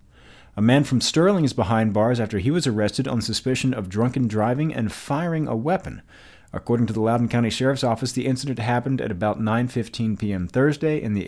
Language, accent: English, American